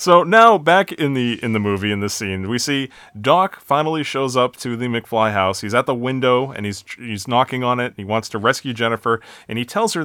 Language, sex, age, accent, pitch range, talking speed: English, male, 30-49, American, 105-145 Hz, 245 wpm